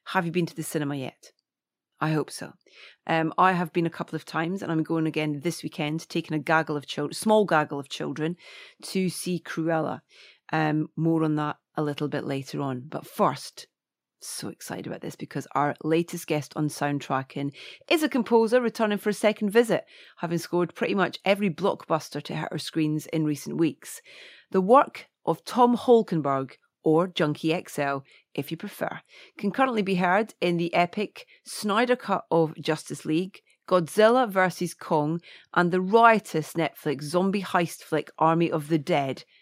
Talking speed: 175 wpm